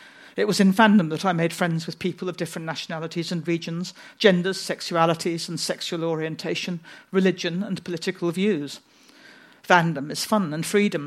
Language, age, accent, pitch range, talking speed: Swedish, 50-69, British, 165-205 Hz, 155 wpm